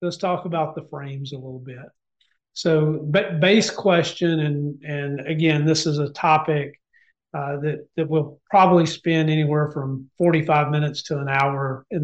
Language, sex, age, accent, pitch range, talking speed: English, male, 40-59, American, 150-170 Hz, 170 wpm